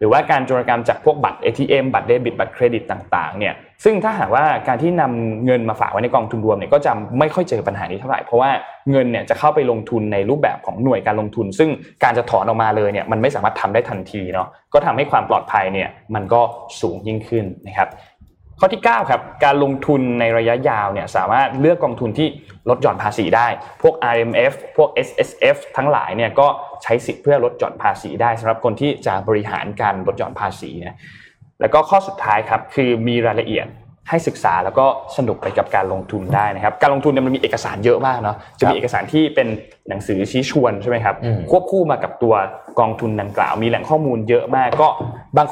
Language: Thai